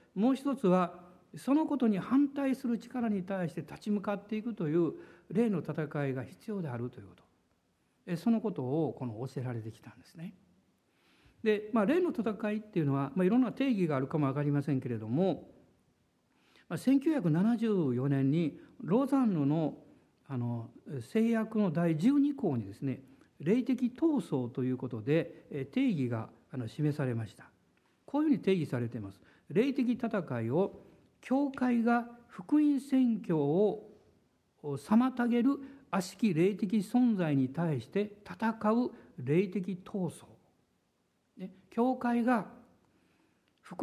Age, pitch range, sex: 60-79, 145-230 Hz, male